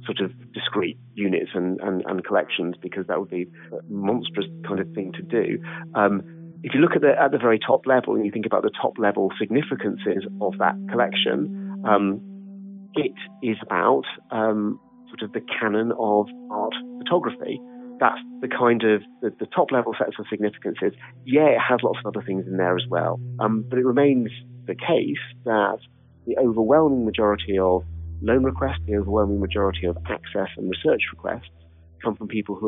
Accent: British